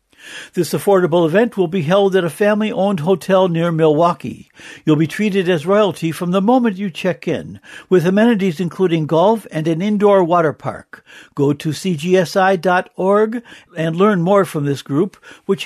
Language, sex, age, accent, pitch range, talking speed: English, male, 60-79, American, 160-210 Hz, 160 wpm